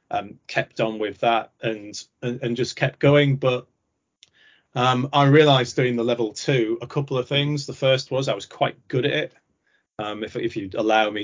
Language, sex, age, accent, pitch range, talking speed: English, male, 30-49, British, 105-125 Hz, 205 wpm